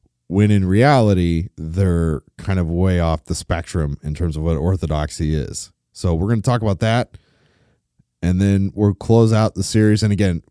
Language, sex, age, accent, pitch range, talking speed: English, male, 30-49, American, 90-105 Hz, 185 wpm